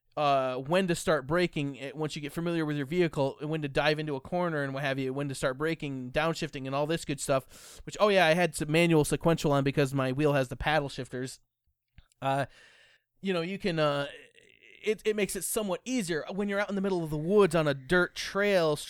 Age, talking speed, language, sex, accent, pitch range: 20-39, 235 wpm, English, male, American, 145-180 Hz